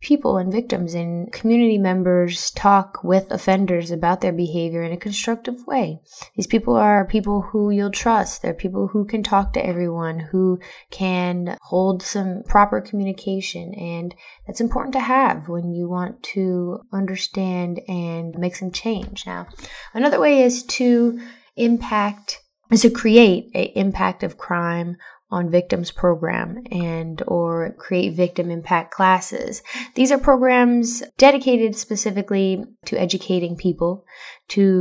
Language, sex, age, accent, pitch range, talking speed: English, female, 20-39, American, 180-235 Hz, 140 wpm